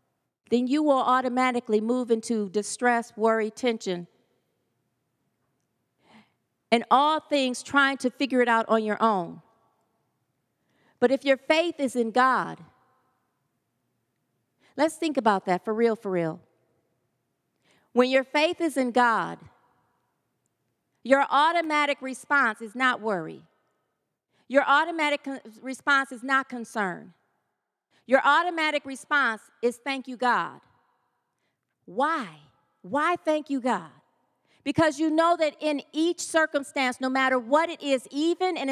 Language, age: English, 40-59